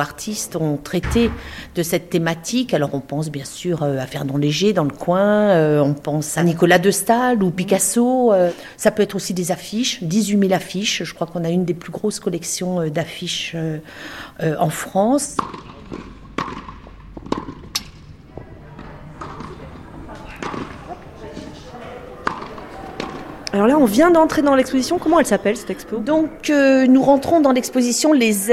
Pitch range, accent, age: 185-250 Hz, French, 40-59